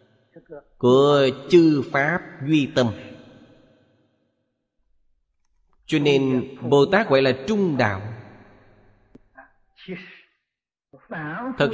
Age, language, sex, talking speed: 20-39, Vietnamese, male, 70 wpm